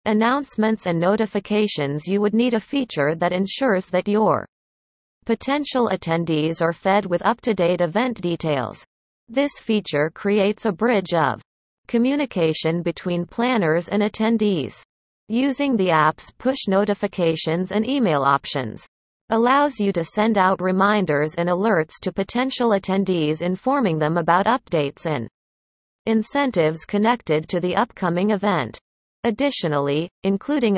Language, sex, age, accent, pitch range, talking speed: English, female, 40-59, American, 165-225 Hz, 125 wpm